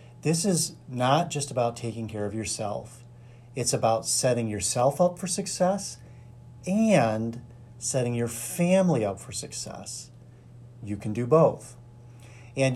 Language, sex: English, male